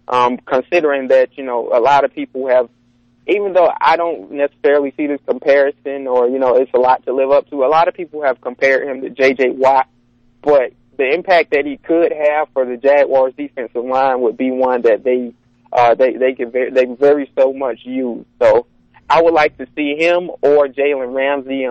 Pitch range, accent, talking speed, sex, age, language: 125-145 Hz, American, 205 wpm, male, 20-39, English